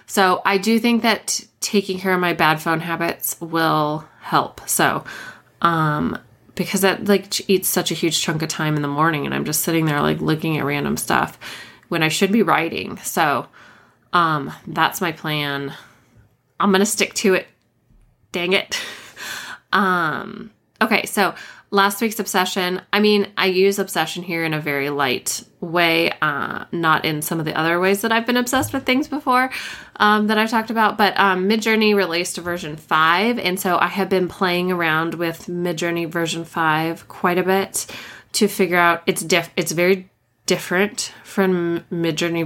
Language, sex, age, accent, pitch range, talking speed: English, female, 20-39, American, 165-195 Hz, 180 wpm